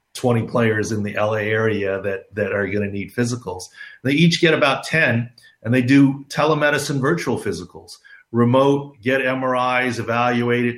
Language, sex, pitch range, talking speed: English, male, 110-135 Hz, 155 wpm